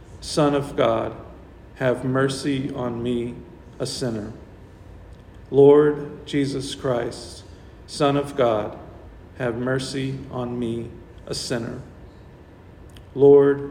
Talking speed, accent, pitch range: 95 wpm, American, 95-135 Hz